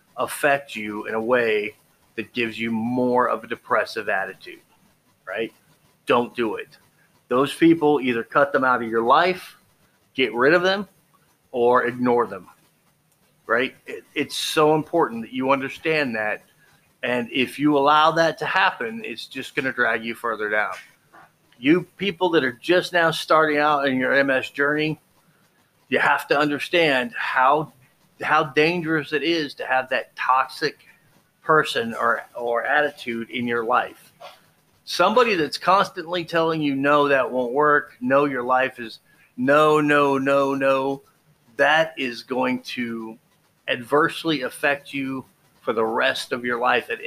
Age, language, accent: 40-59, English, American